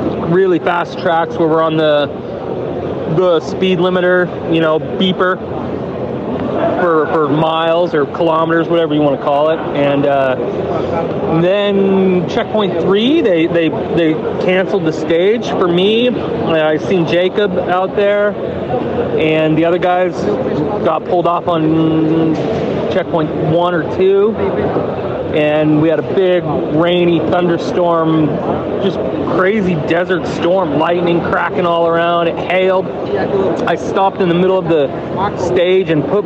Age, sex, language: 30-49, male, English